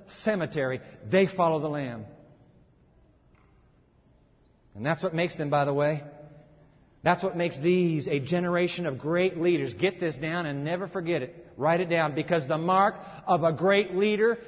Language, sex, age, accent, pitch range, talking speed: English, male, 60-79, American, 145-205 Hz, 160 wpm